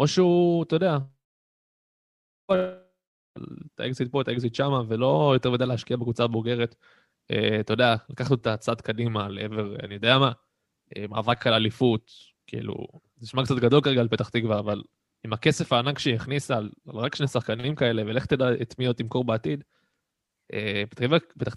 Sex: male